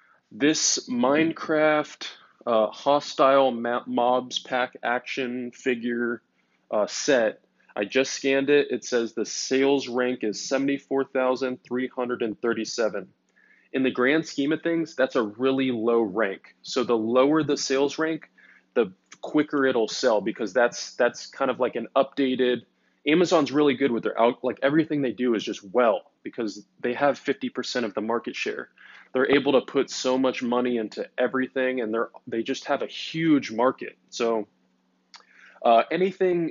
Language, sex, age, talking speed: English, male, 20-39, 160 wpm